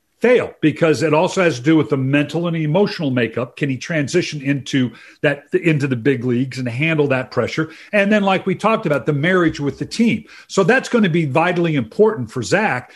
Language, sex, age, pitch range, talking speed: English, male, 50-69, 145-180 Hz, 215 wpm